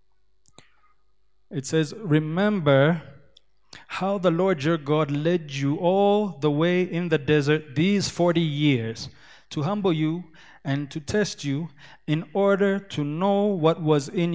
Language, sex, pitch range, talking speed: English, male, 150-180 Hz, 140 wpm